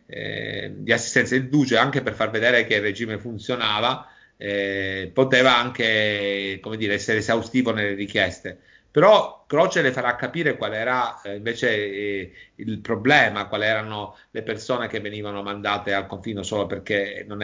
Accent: native